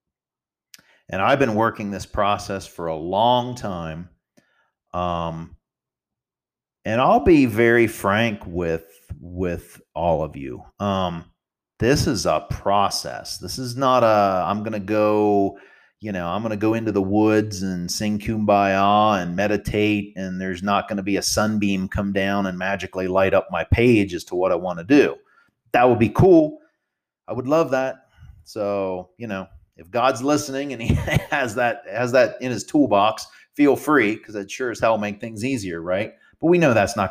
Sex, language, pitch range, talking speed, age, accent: male, English, 95-115 Hz, 180 wpm, 40-59, American